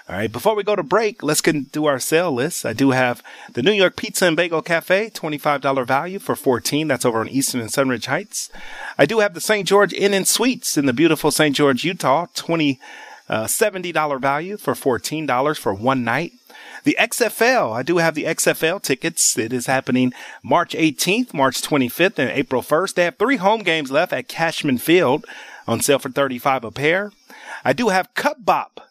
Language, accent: English, American